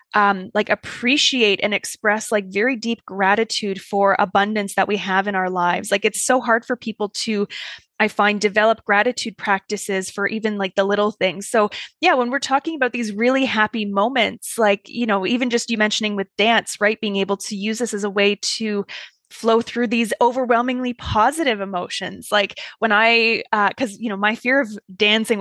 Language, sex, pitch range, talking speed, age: English, female, 200-245 Hz, 190 wpm, 20-39